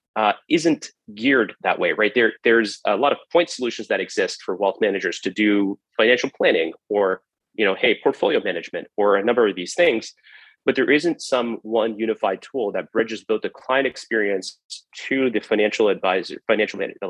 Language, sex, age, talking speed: English, male, 30-49, 185 wpm